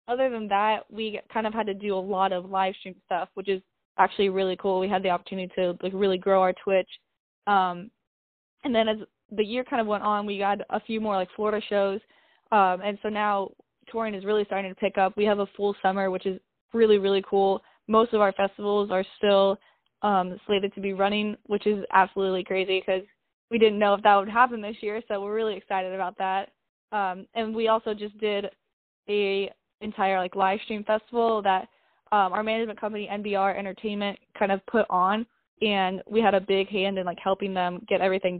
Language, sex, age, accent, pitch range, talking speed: English, female, 10-29, American, 190-210 Hz, 210 wpm